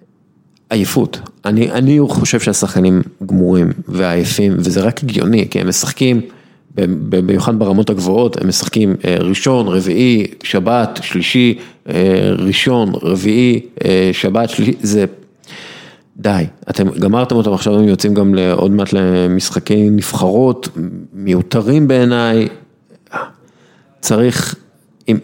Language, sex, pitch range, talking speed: Hebrew, male, 95-120 Hz, 110 wpm